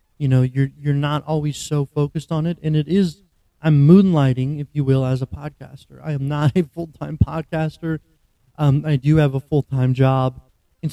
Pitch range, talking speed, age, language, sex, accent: 130-155 Hz, 190 wpm, 30-49, English, male, American